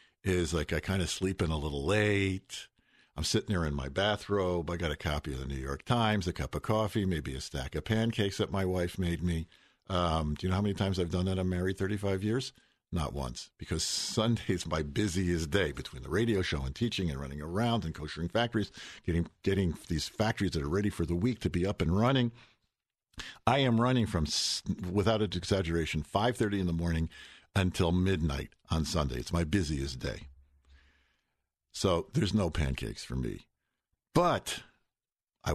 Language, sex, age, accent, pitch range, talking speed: English, male, 50-69, American, 80-115 Hz, 190 wpm